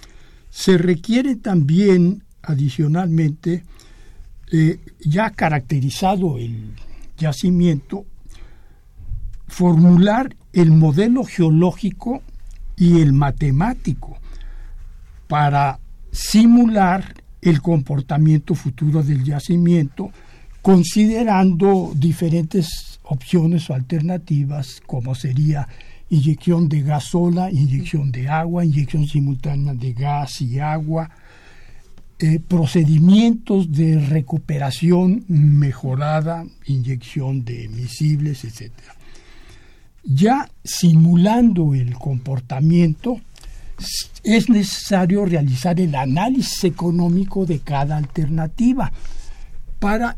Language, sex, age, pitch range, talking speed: Spanish, male, 60-79, 140-180 Hz, 80 wpm